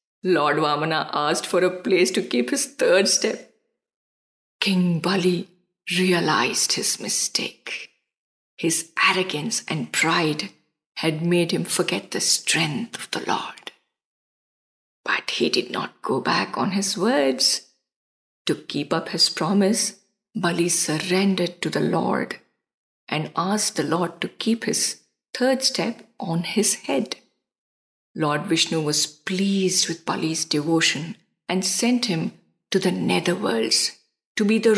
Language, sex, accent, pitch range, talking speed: English, female, Indian, 165-215 Hz, 130 wpm